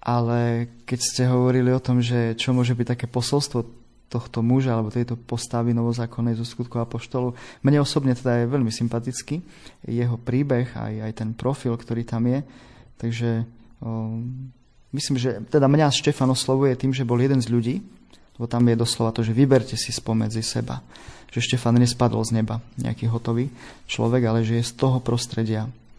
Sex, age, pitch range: male, 20-39, 115-125 Hz